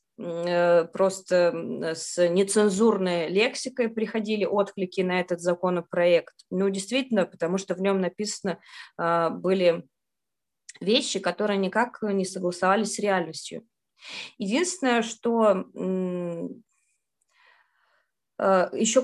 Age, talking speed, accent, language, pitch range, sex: 20-39, 85 wpm, native, Russian, 185-230 Hz, female